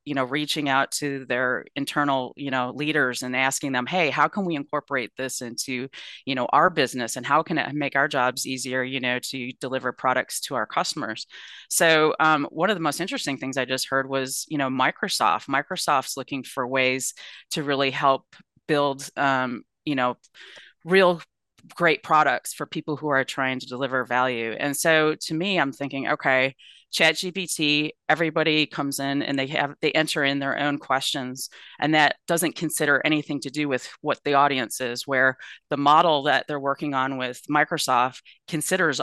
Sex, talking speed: female, 185 wpm